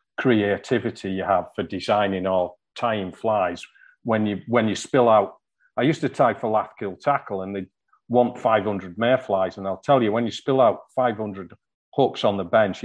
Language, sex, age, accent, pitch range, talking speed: English, male, 40-59, British, 100-120 Hz, 180 wpm